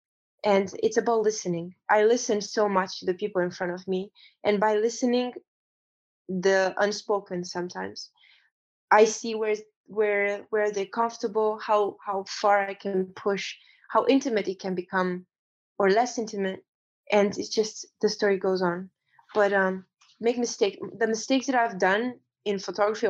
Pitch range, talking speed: 190-230 Hz, 155 wpm